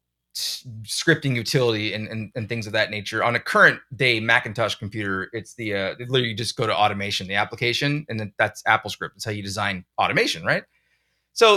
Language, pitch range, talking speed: English, 115-170 Hz, 190 wpm